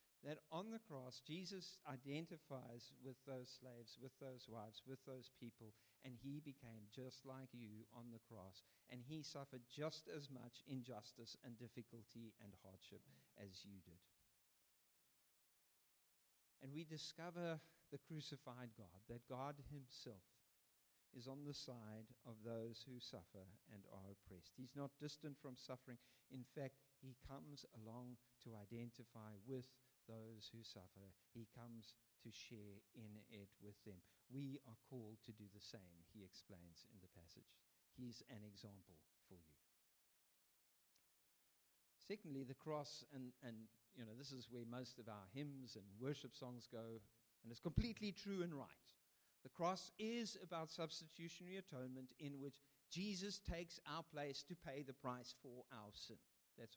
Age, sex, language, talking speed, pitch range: 50-69, male, English, 150 wpm, 110-140 Hz